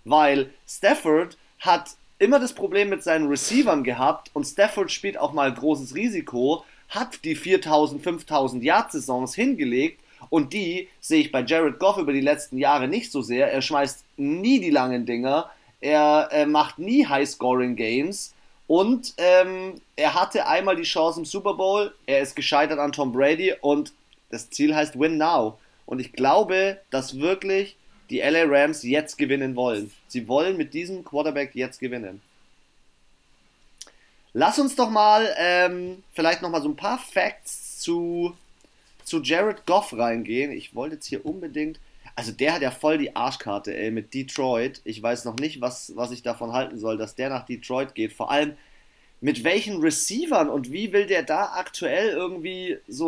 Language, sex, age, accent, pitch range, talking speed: German, male, 30-49, German, 130-190 Hz, 170 wpm